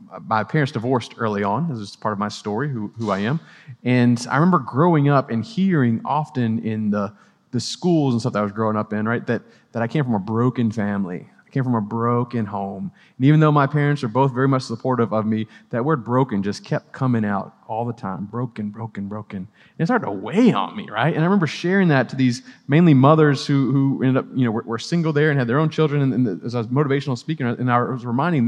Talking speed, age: 245 wpm, 30-49